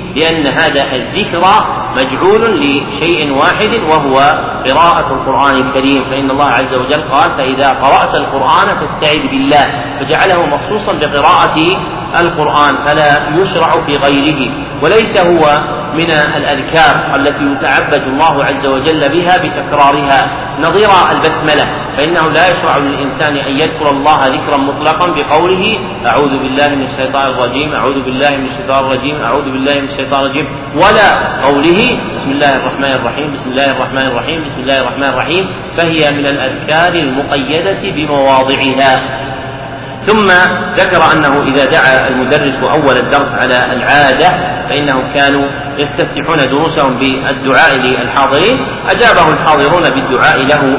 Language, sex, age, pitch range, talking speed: Arabic, male, 40-59, 135-155 Hz, 125 wpm